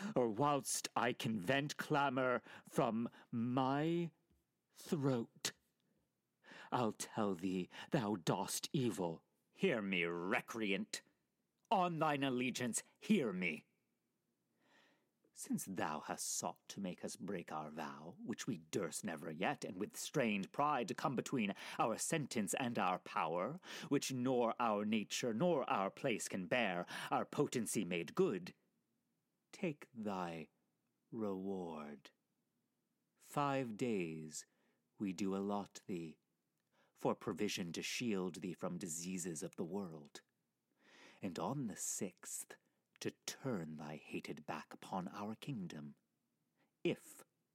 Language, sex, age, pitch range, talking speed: English, male, 40-59, 90-140 Hz, 120 wpm